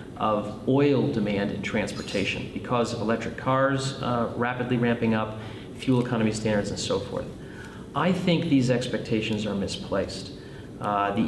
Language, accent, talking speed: English, American, 145 wpm